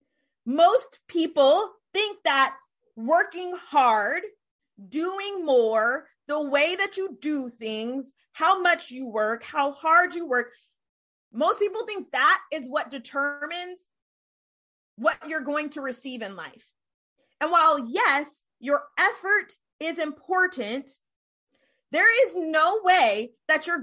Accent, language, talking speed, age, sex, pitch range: American, English, 125 wpm, 30-49, female, 270-370 Hz